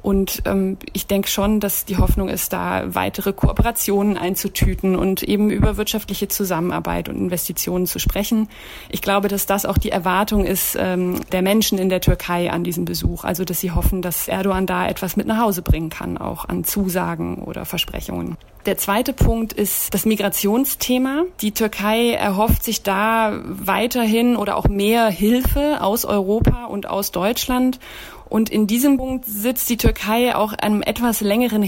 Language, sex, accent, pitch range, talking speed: German, female, German, 190-220 Hz, 170 wpm